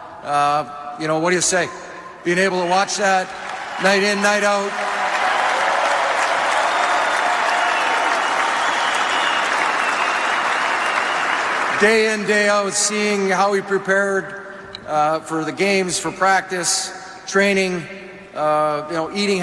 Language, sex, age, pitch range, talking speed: English, male, 40-59, 160-190 Hz, 110 wpm